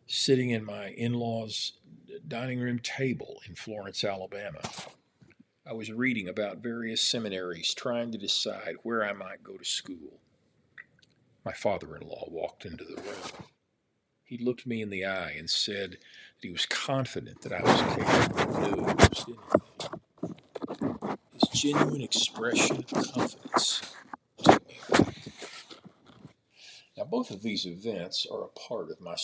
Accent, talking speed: American, 135 wpm